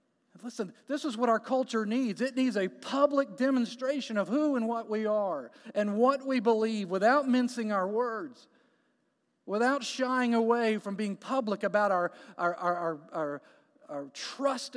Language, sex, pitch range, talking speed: English, male, 200-275 Hz, 145 wpm